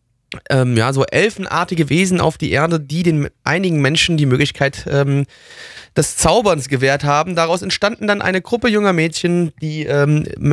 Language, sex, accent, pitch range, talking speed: German, male, German, 145-180 Hz, 160 wpm